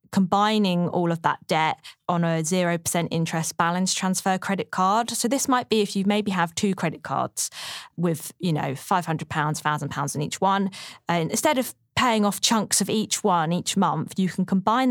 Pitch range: 170-205 Hz